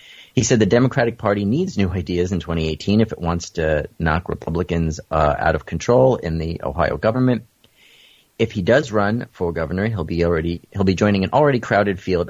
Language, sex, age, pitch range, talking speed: English, male, 30-49, 80-105 Hz, 195 wpm